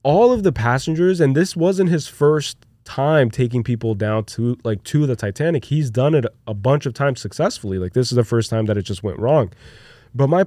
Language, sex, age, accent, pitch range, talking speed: English, male, 20-39, American, 115-155 Hz, 225 wpm